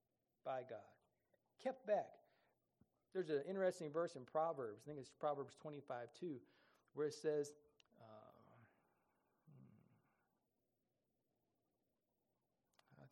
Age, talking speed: 40-59, 90 wpm